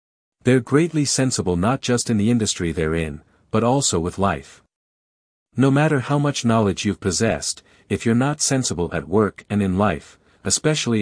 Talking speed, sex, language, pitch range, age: 170 wpm, male, Vietnamese, 95-125 Hz, 50-69